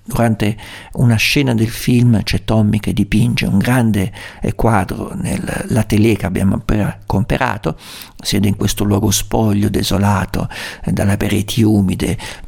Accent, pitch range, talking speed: native, 100-120 Hz, 135 wpm